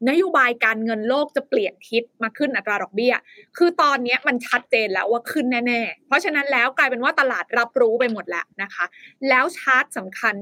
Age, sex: 20-39, female